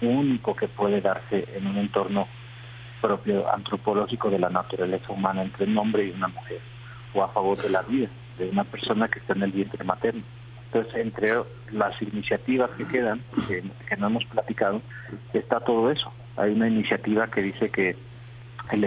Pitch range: 100-120 Hz